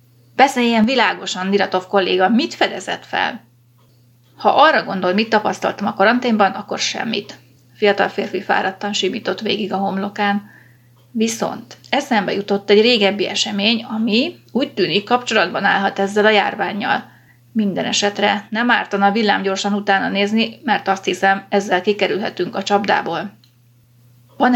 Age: 30-49